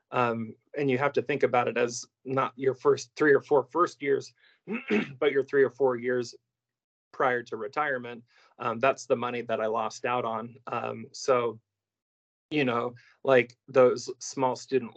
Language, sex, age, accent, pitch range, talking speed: English, male, 20-39, American, 115-130 Hz, 170 wpm